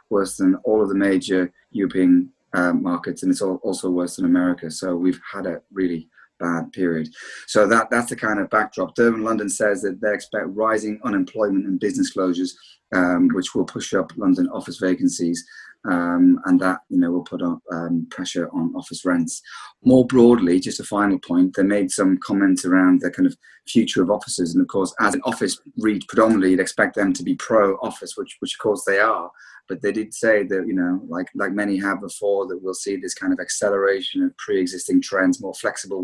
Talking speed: 205 wpm